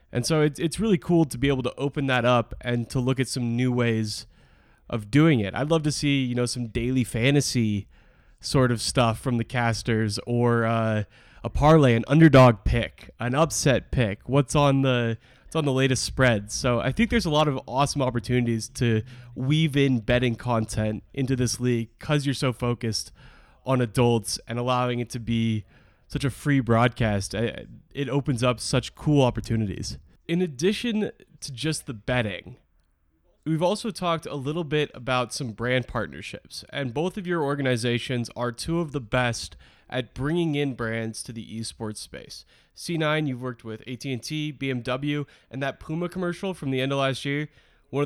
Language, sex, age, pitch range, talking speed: English, male, 20-39, 115-145 Hz, 180 wpm